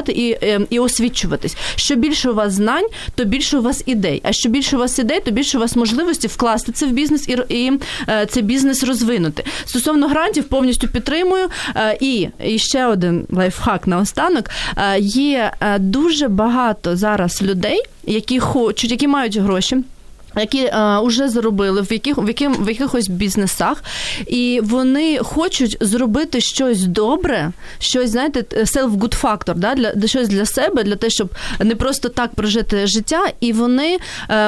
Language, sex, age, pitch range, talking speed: Ukrainian, female, 30-49, 220-275 Hz, 165 wpm